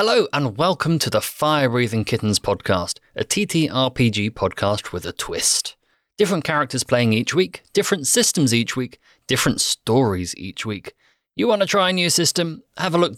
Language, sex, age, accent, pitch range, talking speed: English, male, 30-49, British, 105-145 Hz, 175 wpm